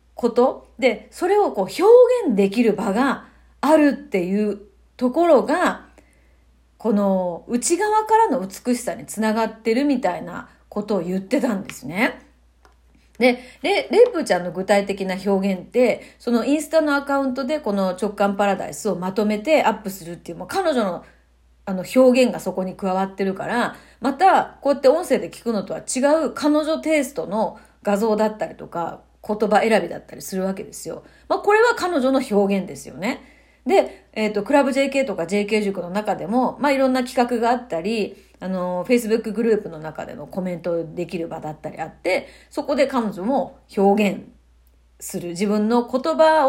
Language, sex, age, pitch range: Japanese, female, 40-59, 190-270 Hz